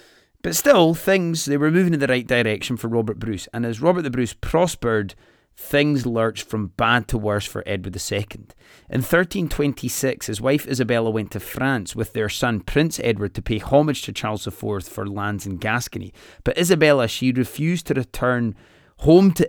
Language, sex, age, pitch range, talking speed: English, male, 30-49, 110-140 Hz, 185 wpm